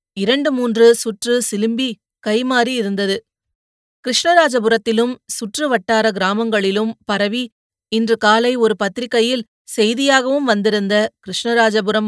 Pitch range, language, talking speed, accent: 205-250 Hz, Tamil, 85 wpm, native